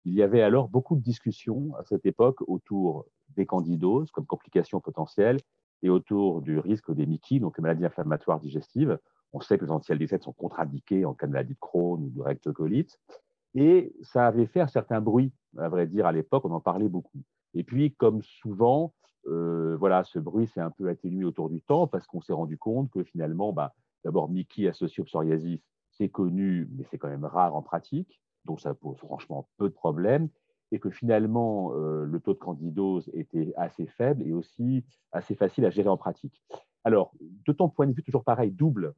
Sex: male